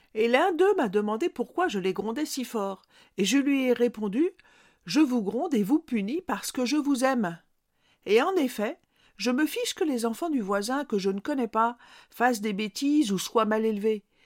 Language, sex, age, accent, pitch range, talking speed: French, female, 50-69, French, 215-300 Hz, 210 wpm